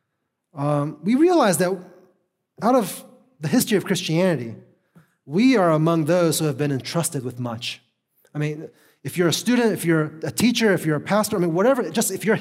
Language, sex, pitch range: English, male, 130-185 Hz